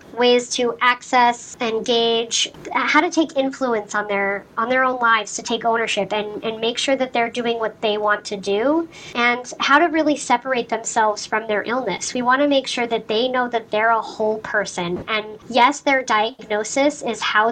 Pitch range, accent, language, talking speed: 215-260 Hz, American, English, 195 wpm